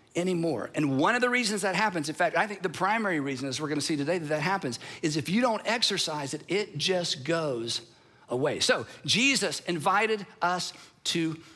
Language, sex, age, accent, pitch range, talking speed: English, male, 50-69, American, 160-225 Hz, 195 wpm